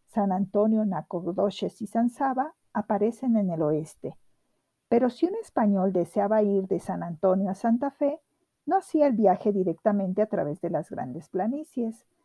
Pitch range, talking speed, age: 195-250 Hz, 160 wpm, 50-69